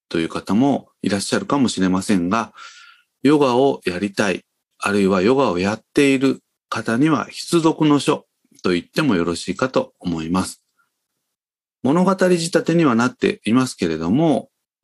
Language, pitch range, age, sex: Japanese, 95-145 Hz, 40-59, male